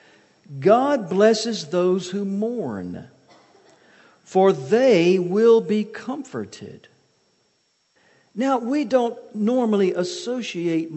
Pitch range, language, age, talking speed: 135-190 Hz, English, 50-69, 80 wpm